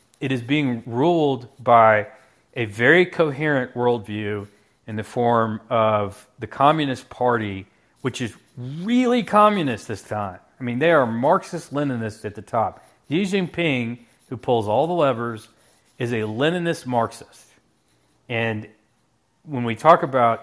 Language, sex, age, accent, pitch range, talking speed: English, male, 40-59, American, 110-130 Hz, 130 wpm